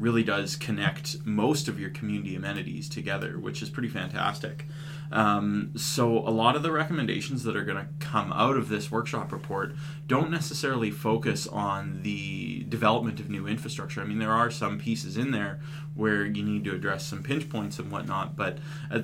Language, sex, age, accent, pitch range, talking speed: English, male, 20-39, American, 110-150 Hz, 185 wpm